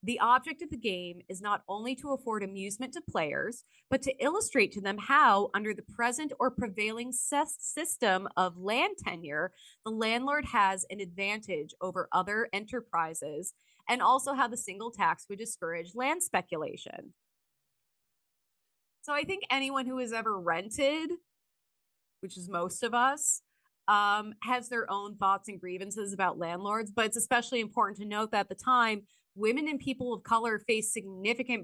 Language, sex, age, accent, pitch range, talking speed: English, female, 20-39, American, 195-255 Hz, 160 wpm